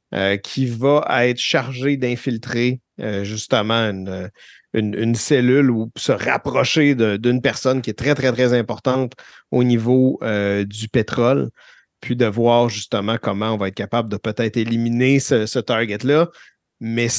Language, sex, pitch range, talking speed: French, male, 110-130 Hz, 155 wpm